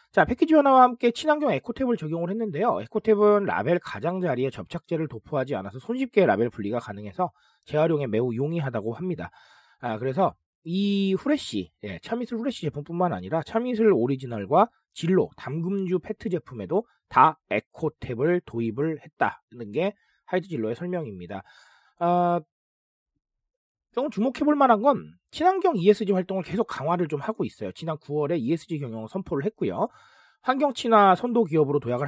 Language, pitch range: Korean, 130-215 Hz